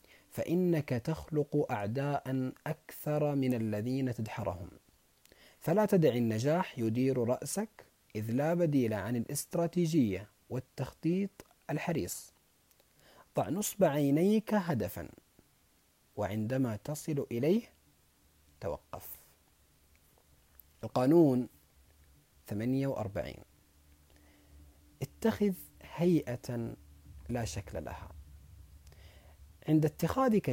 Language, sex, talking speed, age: Arabic, male, 70 wpm, 40-59